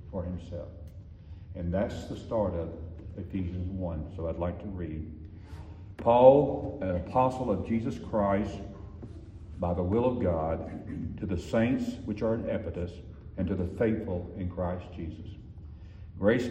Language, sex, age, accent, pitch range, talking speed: English, male, 60-79, American, 85-105 Hz, 140 wpm